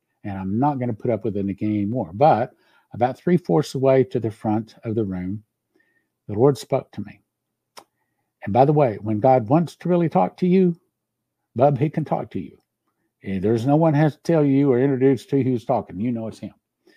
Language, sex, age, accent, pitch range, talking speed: English, male, 60-79, American, 105-140 Hz, 220 wpm